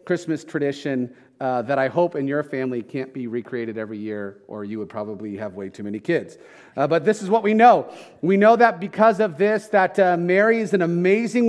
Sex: male